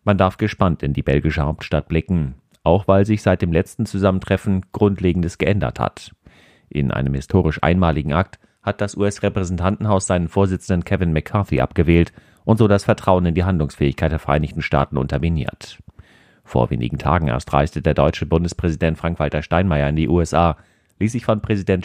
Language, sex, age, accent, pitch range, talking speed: German, male, 40-59, German, 80-95 Hz, 160 wpm